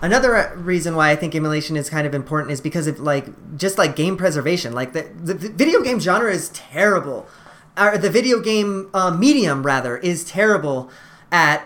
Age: 30-49